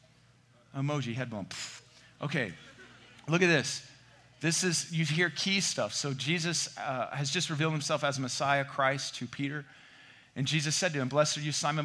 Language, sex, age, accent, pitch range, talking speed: English, male, 40-59, American, 125-150 Hz, 170 wpm